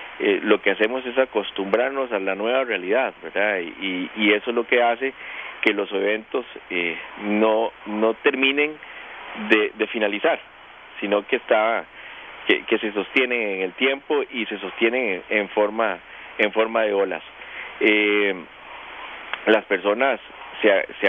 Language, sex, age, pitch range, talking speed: Spanish, male, 40-59, 105-135 Hz, 150 wpm